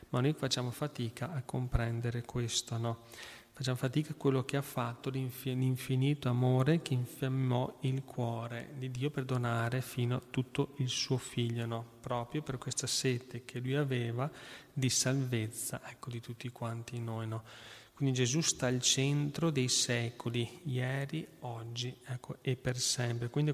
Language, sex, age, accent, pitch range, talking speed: Italian, male, 30-49, native, 120-135 Hz, 160 wpm